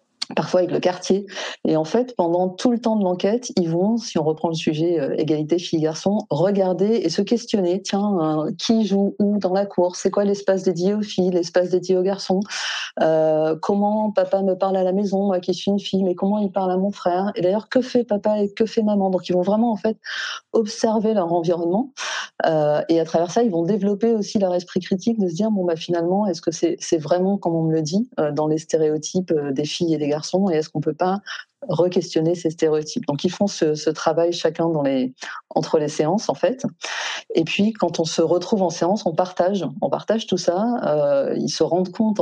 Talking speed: 230 wpm